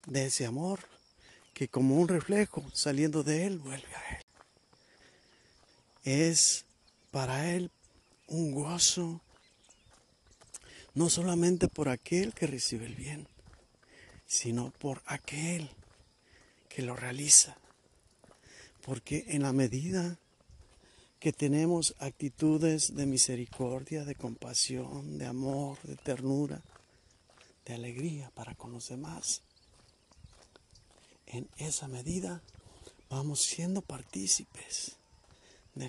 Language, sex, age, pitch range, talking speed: Spanish, male, 50-69, 125-155 Hz, 100 wpm